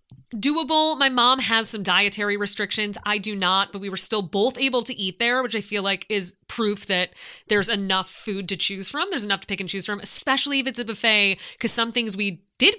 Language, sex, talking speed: English, female, 230 wpm